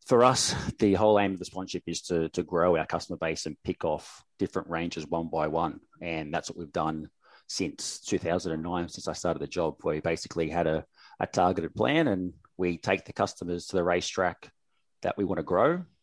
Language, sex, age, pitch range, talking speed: English, male, 30-49, 85-100 Hz, 210 wpm